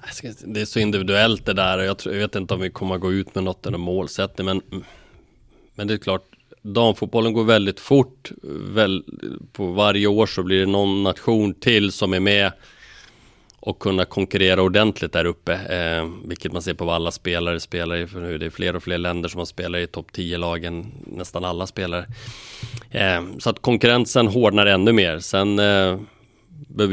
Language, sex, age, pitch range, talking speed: Swedish, male, 30-49, 90-105 Hz, 175 wpm